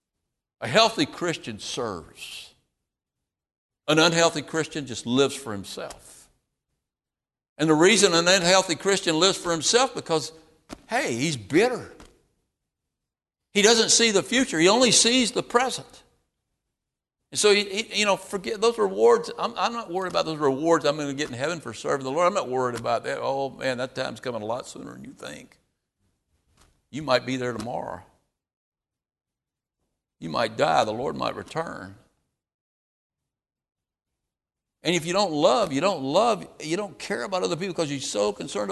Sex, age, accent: male, 60-79, American